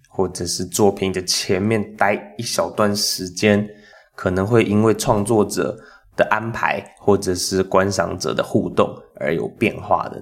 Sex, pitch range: male, 95-105 Hz